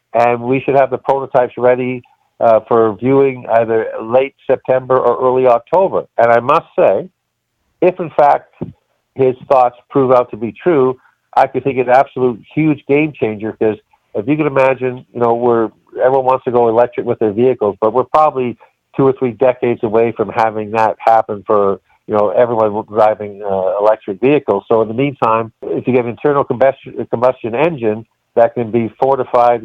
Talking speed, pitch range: 180 wpm, 110-130 Hz